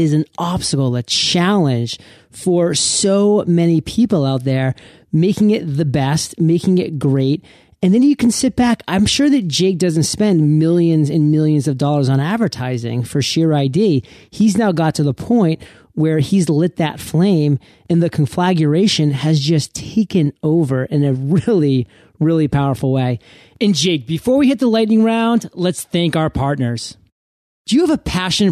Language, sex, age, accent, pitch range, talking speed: English, male, 40-59, American, 145-200 Hz, 170 wpm